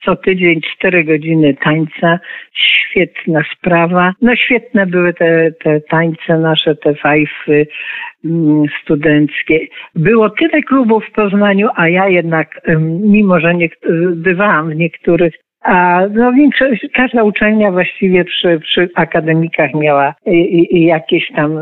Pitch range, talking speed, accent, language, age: 150-185 Hz, 130 wpm, native, Polish, 50-69